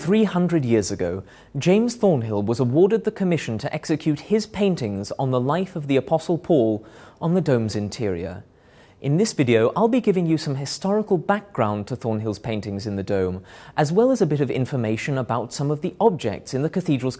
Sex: male